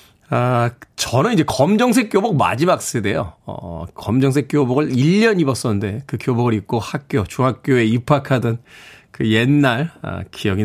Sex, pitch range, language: male, 125-185 Hz, Korean